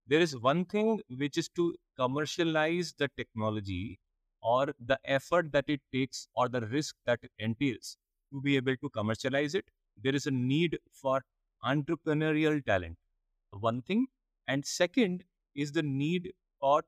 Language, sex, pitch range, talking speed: English, male, 120-155 Hz, 155 wpm